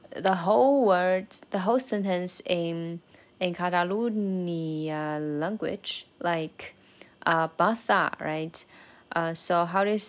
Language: Chinese